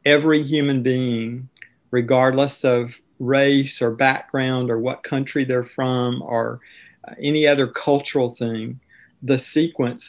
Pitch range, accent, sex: 120-135 Hz, American, male